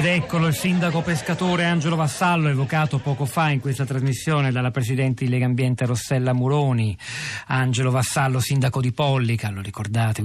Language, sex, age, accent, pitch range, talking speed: Italian, male, 40-59, native, 110-130 Hz, 160 wpm